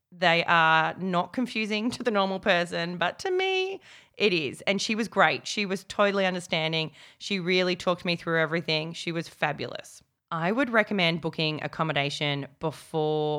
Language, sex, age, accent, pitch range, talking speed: English, female, 20-39, Australian, 155-205 Hz, 160 wpm